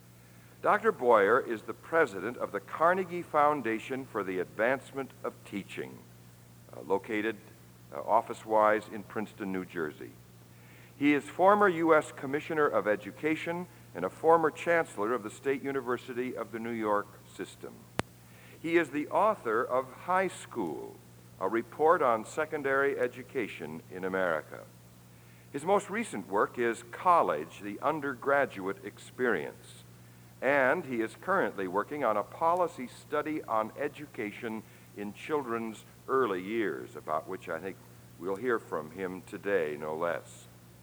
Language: English